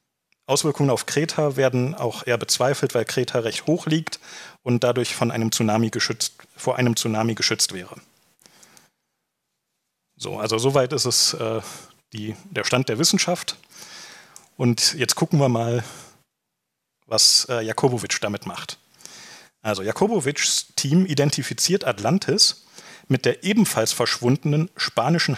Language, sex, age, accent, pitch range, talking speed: English, male, 40-59, German, 120-165 Hz, 130 wpm